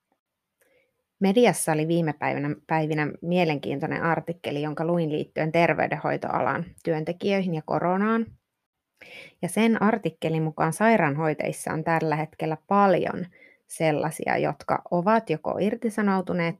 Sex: female